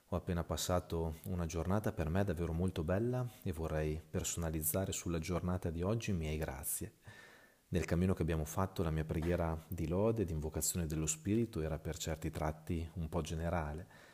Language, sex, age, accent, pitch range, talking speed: Italian, male, 30-49, native, 80-95 Hz, 180 wpm